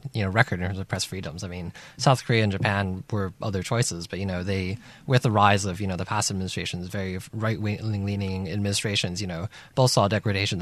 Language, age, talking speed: English, 20-39, 220 wpm